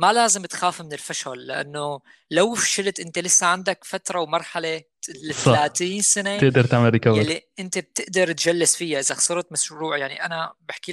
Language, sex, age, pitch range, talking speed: Arabic, female, 20-39, 150-190 Hz, 150 wpm